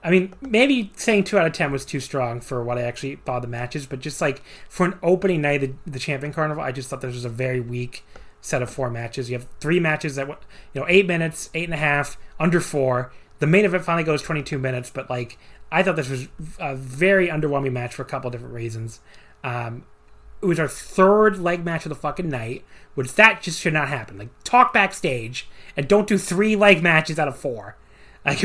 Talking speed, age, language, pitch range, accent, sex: 230 wpm, 30-49, English, 130-175 Hz, American, male